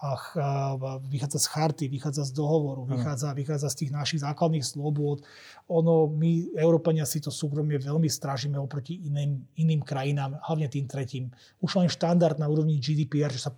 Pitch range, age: 145-170 Hz, 30-49